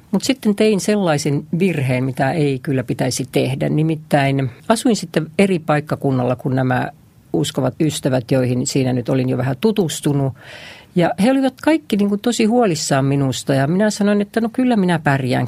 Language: Finnish